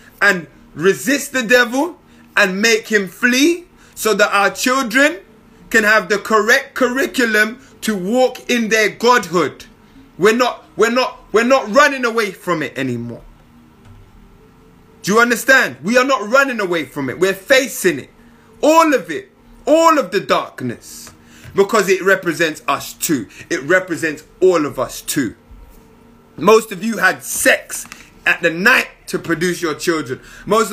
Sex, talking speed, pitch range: male, 150 wpm, 175-245 Hz